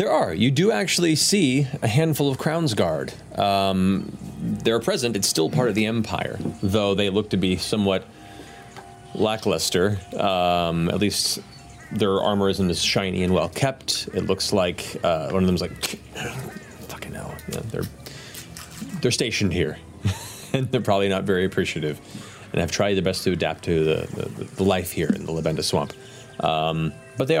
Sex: male